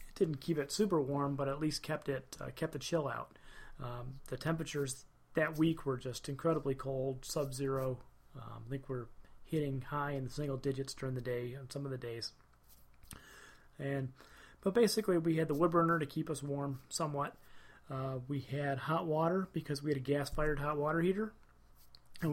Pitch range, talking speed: 130-155 Hz, 190 wpm